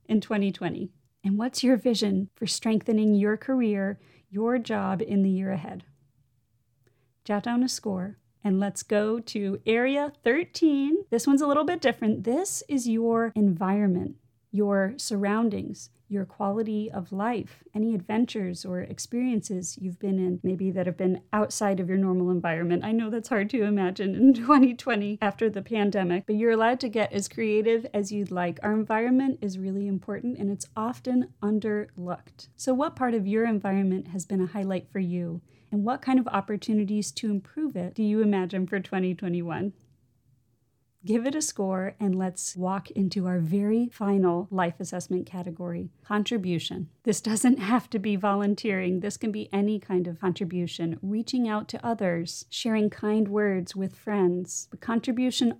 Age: 30-49